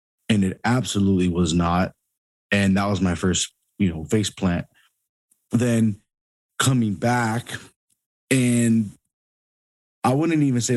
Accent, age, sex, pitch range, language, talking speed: American, 30-49, male, 95-110 Hz, English, 125 wpm